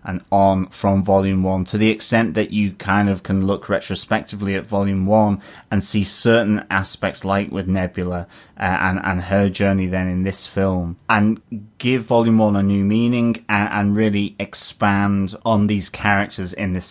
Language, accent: English, British